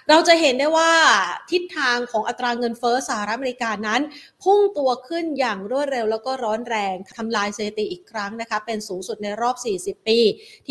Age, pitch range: 30-49, 205-260 Hz